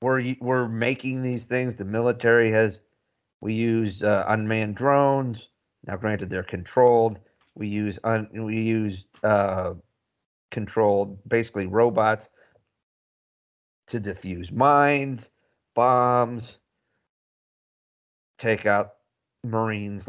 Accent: American